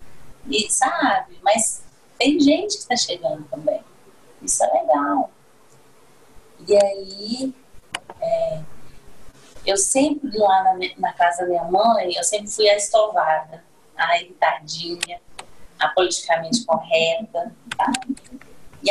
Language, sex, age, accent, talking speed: Portuguese, female, 20-39, Brazilian, 115 wpm